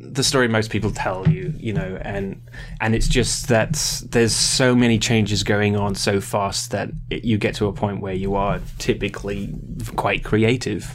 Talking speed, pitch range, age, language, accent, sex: 185 wpm, 105-130 Hz, 20-39, English, British, male